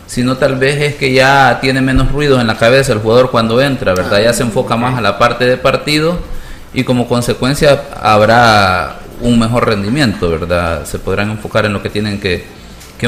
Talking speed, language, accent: 195 wpm, Spanish, Venezuelan